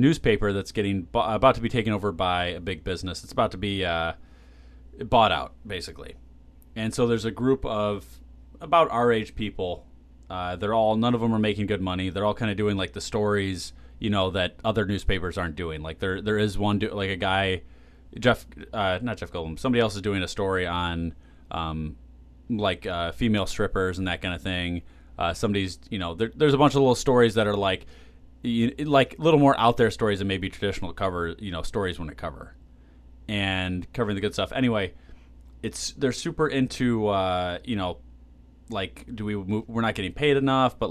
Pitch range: 85-110 Hz